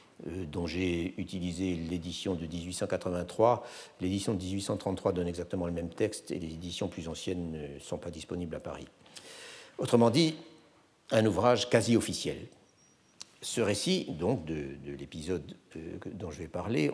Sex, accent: male, French